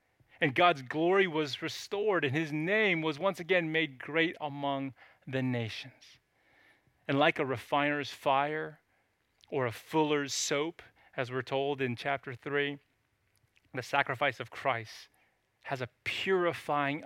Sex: male